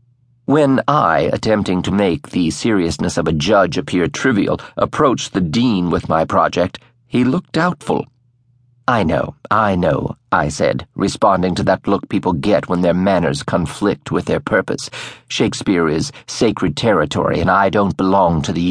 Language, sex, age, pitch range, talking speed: English, male, 50-69, 95-125 Hz, 160 wpm